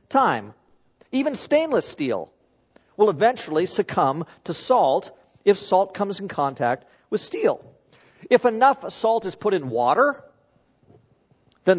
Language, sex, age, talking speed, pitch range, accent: English, male, 50-69, 120 wpm, 170-245 Hz, American